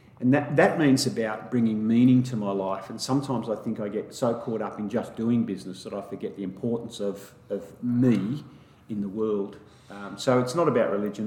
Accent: Australian